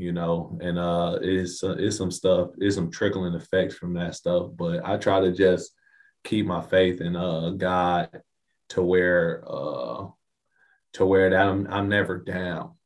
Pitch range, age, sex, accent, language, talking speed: 85-95 Hz, 20-39, male, American, English, 175 wpm